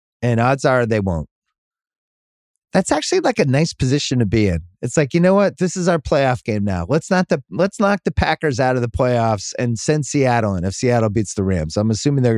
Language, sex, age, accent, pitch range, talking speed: English, male, 30-49, American, 110-155 Hz, 235 wpm